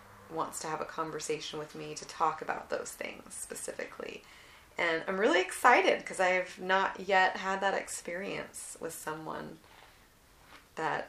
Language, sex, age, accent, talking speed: English, female, 30-49, American, 150 wpm